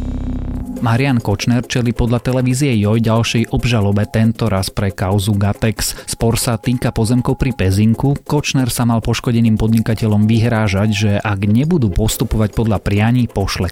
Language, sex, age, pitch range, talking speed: Slovak, male, 30-49, 100-120 Hz, 140 wpm